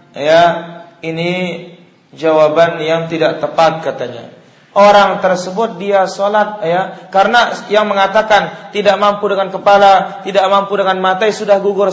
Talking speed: 125 wpm